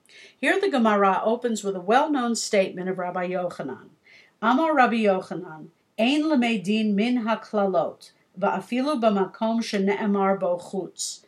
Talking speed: 115 wpm